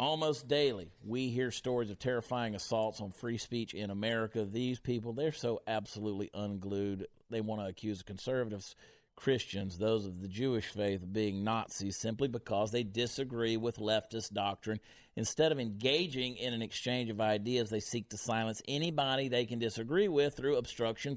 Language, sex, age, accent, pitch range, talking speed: English, male, 50-69, American, 105-130 Hz, 165 wpm